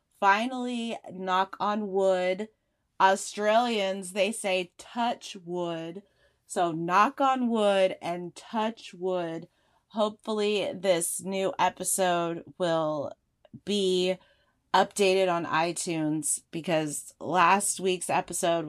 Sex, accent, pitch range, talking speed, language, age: female, American, 170-205 Hz, 95 wpm, English, 30-49